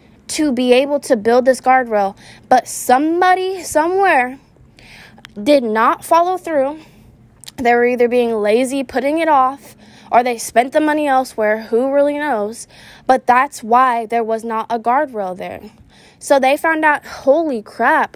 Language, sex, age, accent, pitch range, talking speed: English, female, 10-29, American, 225-275 Hz, 150 wpm